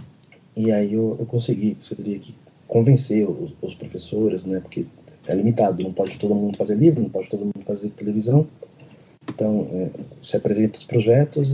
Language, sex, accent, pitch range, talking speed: Portuguese, male, Brazilian, 105-130 Hz, 175 wpm